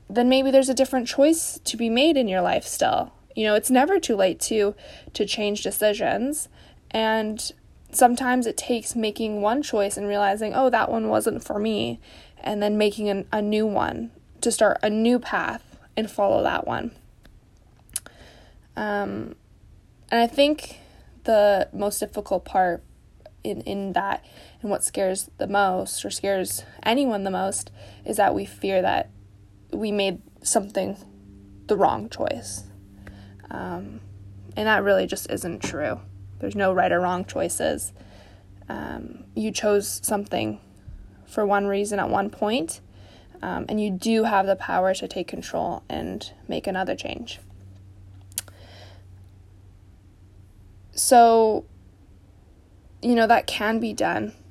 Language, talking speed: English, 145 wpm